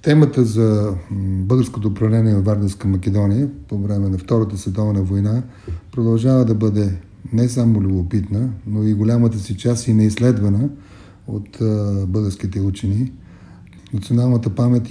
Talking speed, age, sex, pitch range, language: 125 wpm, 30-49, male, 105-120 Hz, Bulgarian